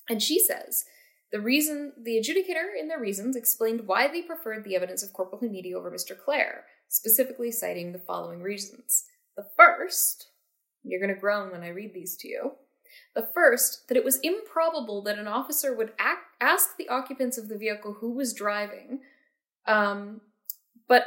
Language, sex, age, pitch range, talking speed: English, female, 10-29, 200-270 Hz, 175 wpm